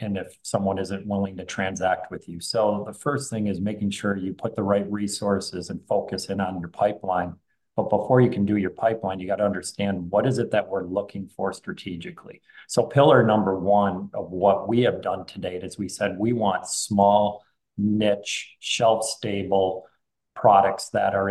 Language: English